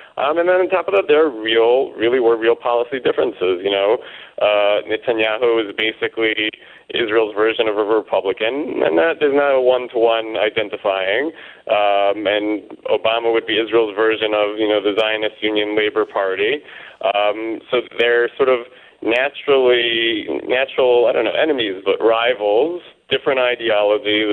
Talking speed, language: 155 wpm, English